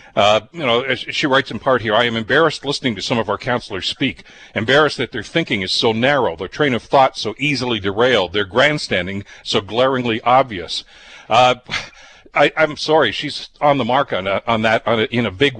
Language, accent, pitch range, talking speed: English, American, 115-150 Hz, 210 wpm